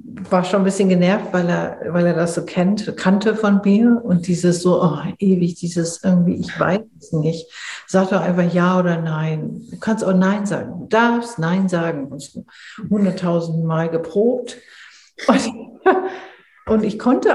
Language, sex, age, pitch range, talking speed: German, female, 60-79, 175-220 Hz, 165 wpm